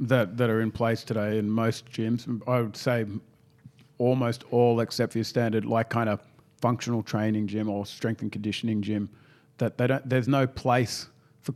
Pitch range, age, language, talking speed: 110-130 Hz, 40-59, English, 185 wpm